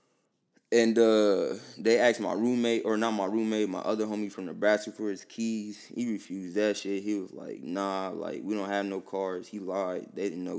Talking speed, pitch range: 210 wpm, 95-110 Hz